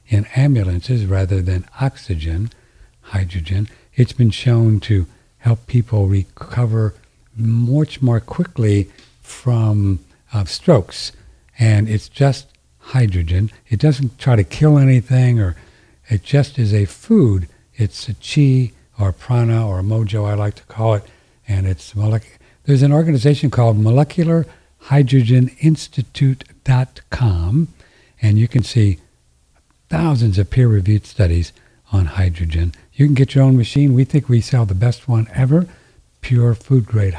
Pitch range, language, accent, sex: 95-125 Hz, English, American, male